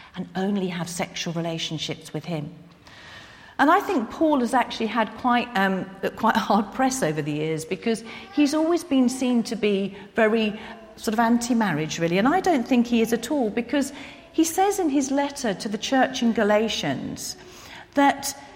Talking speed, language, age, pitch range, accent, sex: 175 wpm, English, 40-59, 205-285 Hz, British, female